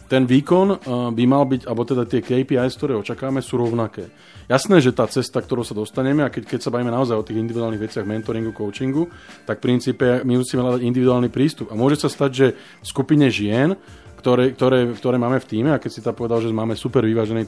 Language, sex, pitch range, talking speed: Slovak, male, 115-135 Hz, 215 wpm